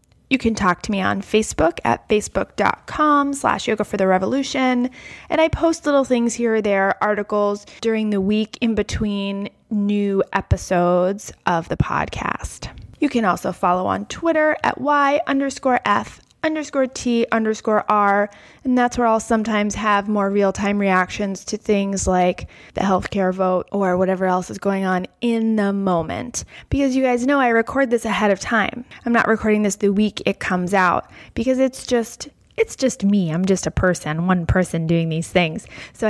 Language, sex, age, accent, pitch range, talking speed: English, female, 20-39, American, 185-235 Hz, 175 wpm